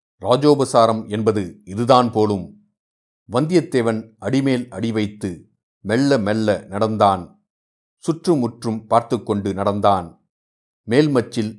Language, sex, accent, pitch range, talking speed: Tamil, male, native, 105-125 Hz, 80 wpm